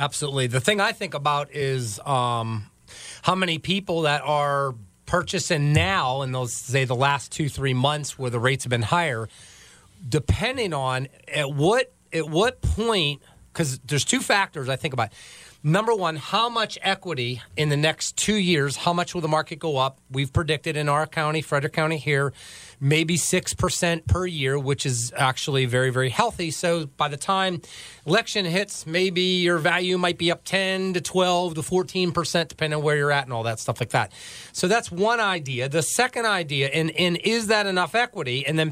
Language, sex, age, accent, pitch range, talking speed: English, male, 30-49, American, 130-180 Hz, 185 wpm